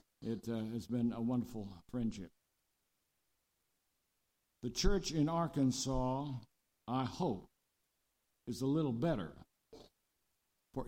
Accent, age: American, 60-79